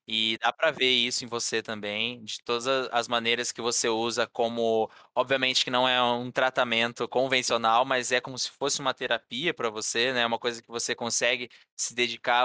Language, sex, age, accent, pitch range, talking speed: Portuguese, male, 20-39, Brazilian, 115-130 Hz, 195 wpm